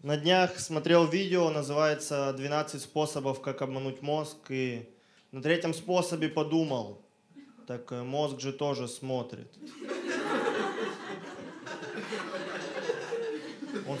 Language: Russian